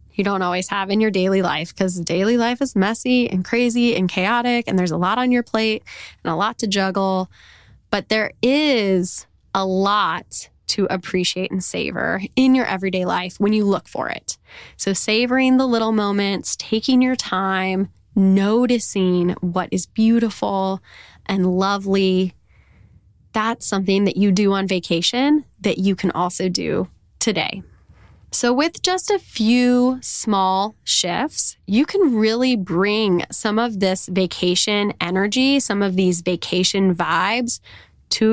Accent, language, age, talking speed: American, English, 10-29, 150 wpm